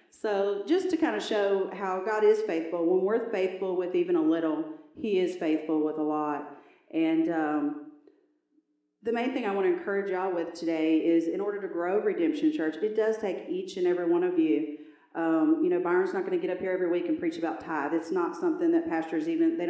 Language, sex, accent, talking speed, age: English, female, American, 225 wpm, 40-59